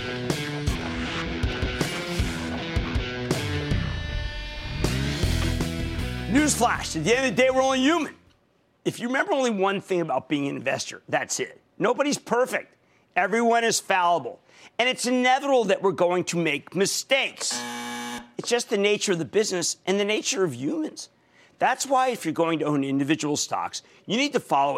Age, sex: 50-69, male